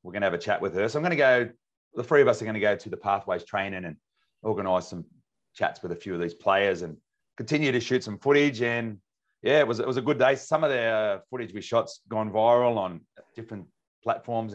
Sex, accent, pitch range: male, Australian, 100-125 Hz